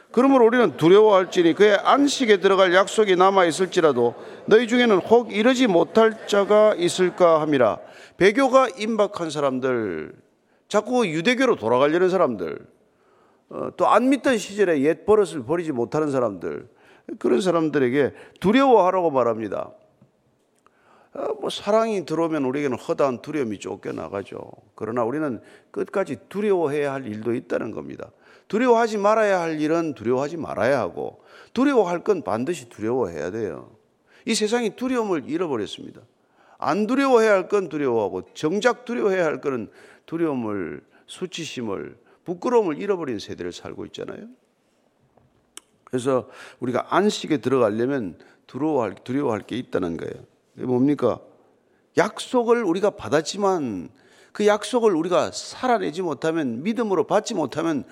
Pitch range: 160-235 Hz